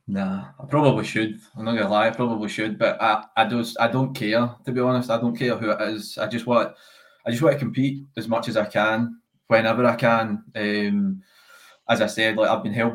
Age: 20-39